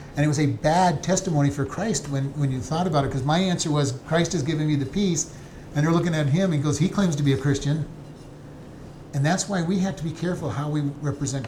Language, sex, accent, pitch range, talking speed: English, male, American, 140-170 Hz, 255 wpm